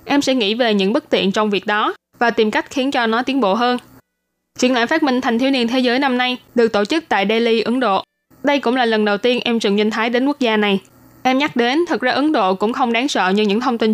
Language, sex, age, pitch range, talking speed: Vietnamese, female, 10-29, 215-265 Hz, 285 wpm